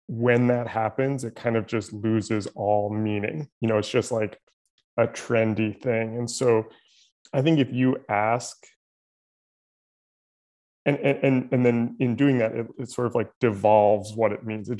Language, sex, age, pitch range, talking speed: English, male, 20-39, 110-125 Hz, 170 wpm